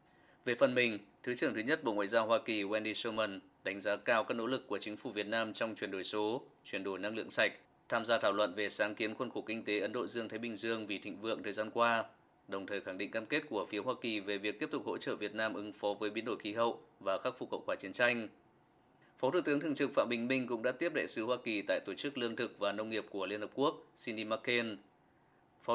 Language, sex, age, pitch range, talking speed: Vietnamese, male, 20-39, 105-120 Hz, 275 wpm